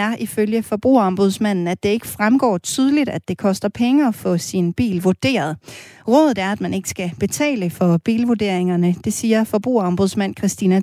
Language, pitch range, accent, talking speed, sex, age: Danish, 180-240 Hz, native, 165 wpm, female, 30-49